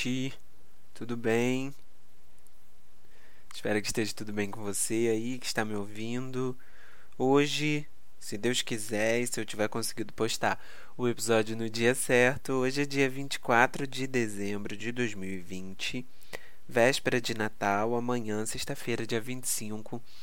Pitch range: 105-125 Hz